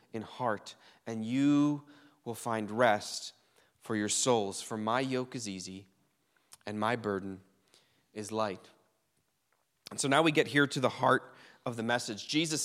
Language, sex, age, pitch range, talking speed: English, male, 20-39, 125-155 Hz, 155 wpm